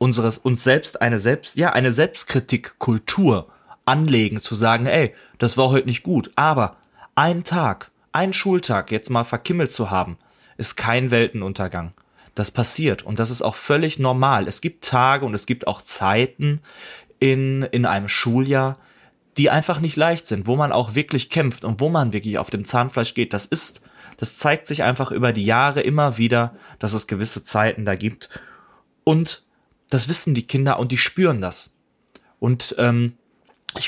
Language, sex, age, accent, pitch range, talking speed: German, male, 30-49, German, 110-135 Hz, 170 wpm